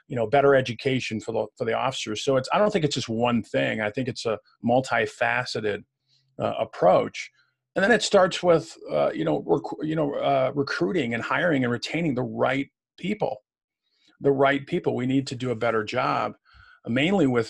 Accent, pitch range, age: American, 120-145 Hz, 40-59